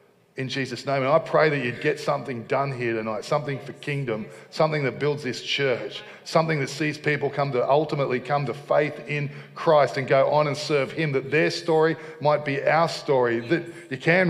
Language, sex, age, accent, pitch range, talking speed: English, male, 40-59, Australian, 135-165 Hz, 205 wpm